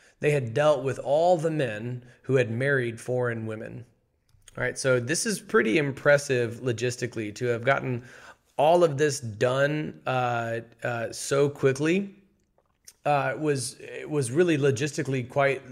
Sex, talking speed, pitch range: male, 145 wpm, 120-140 Hz